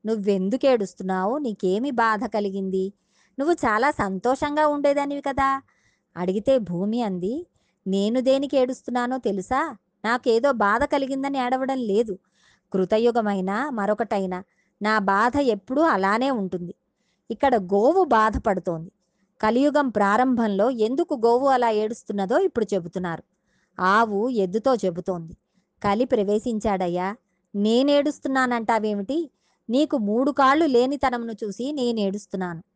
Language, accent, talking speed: Telugu, native, 95 wpm